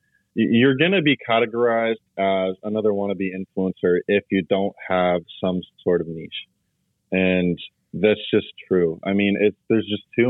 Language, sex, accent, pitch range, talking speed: English, male, American, 90-105 Hz, 155 wpm